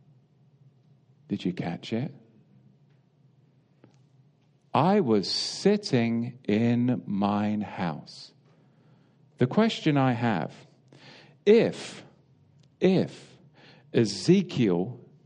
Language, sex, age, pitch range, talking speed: English, male, 50-69, 115-145 Hz, 65 wpm